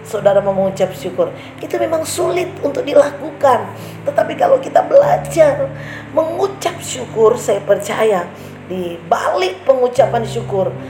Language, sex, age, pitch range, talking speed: Indonesian, female, 40-59, 175-245 Hz, 115 wpm